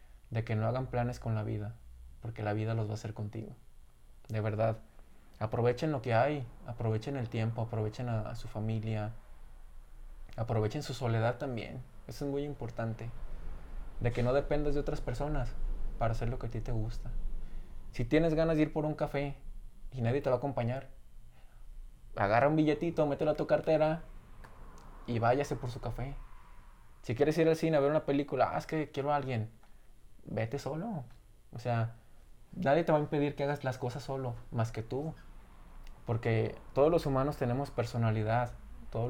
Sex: male